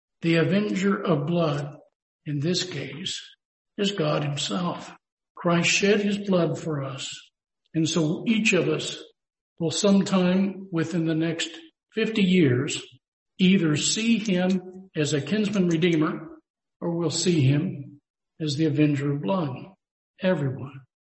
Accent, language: American, English